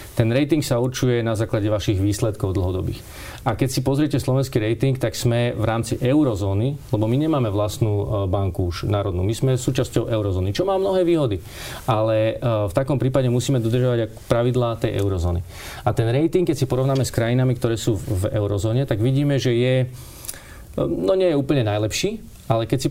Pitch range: 110-130 Hz